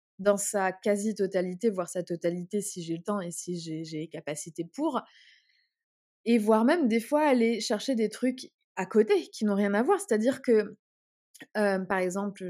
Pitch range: 190-245 Hz